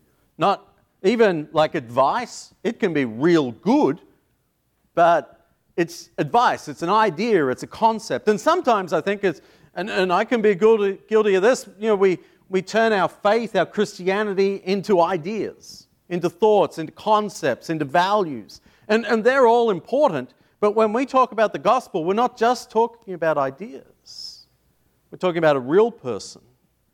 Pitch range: 165-225 Hz